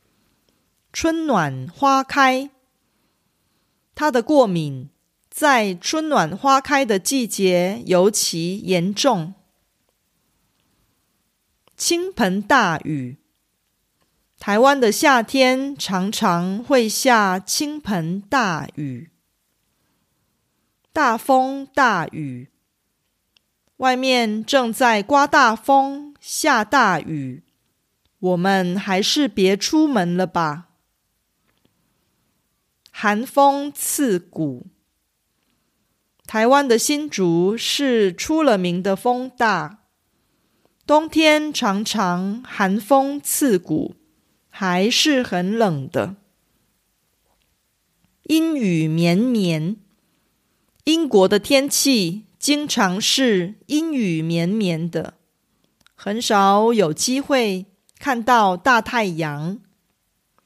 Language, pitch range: Korean, 180-270 Hz